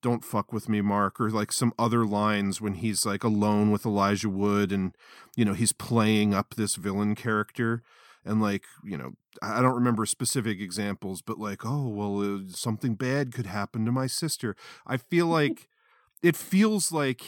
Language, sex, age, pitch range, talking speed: English, male, 40-59, 105-125 Hz, 180 wpm